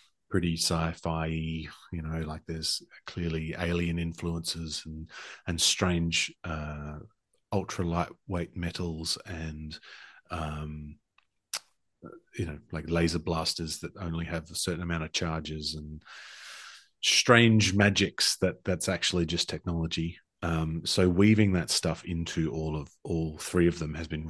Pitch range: 80-95 Hz